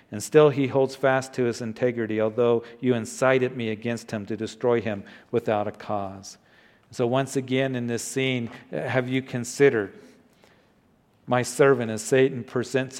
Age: 50-69